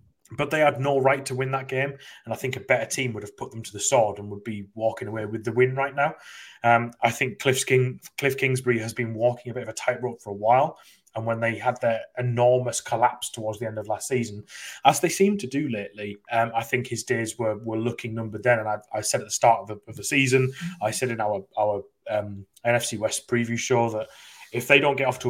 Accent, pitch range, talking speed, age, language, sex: British, 110-130 Hz, 255 wpm, 20-39, English, male